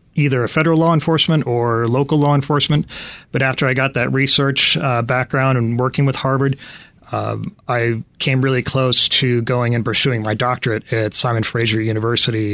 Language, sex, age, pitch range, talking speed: English, male, 30-49, 110-135 Hz, 170 wpm